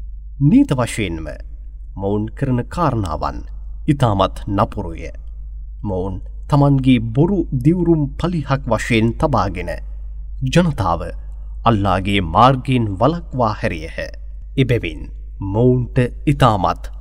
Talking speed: 80 wpm